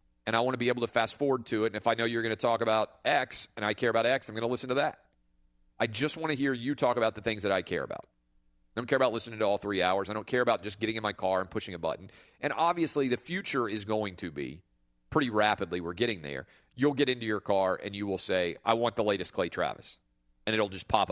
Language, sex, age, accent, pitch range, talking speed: English, male, 40-59, American, 90-120 Hz, 285 wpm